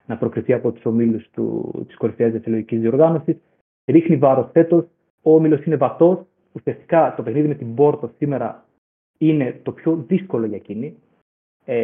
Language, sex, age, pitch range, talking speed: Greek, male, 30-49, 120-155 Hz, 155 wpm